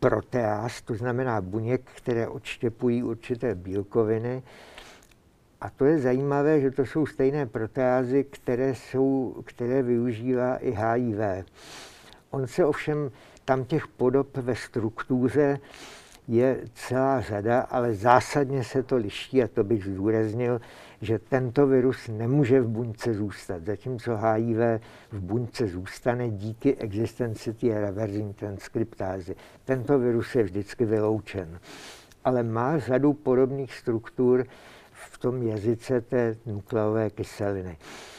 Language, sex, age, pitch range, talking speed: Czech, male, 60-79, 110-130 Hz, 120 wpm